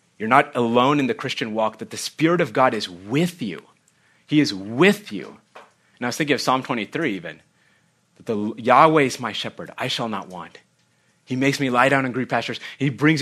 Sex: male